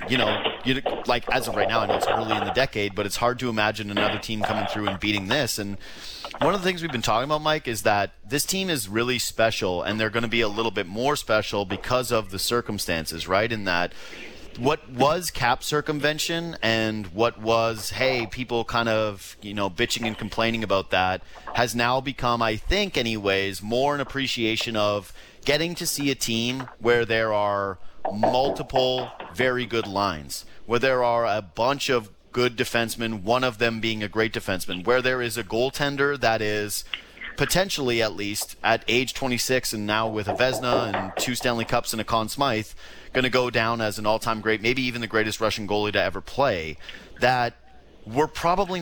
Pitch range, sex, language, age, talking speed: 105-130 Hz, male, English, 30-49, 200 wpm